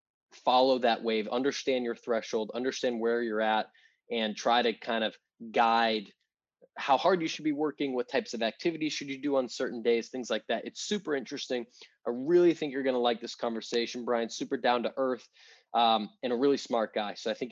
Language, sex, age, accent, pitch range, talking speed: English, male, 20-39, American, 115-145 Hz, 210 wpm